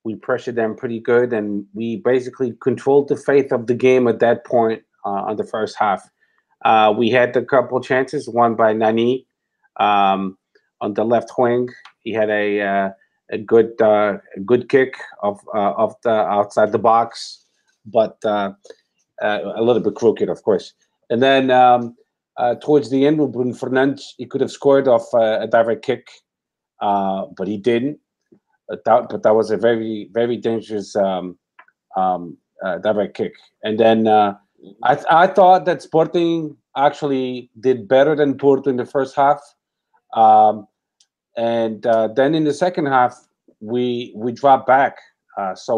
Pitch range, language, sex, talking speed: 110-140 Hz, English, male, 170 wpm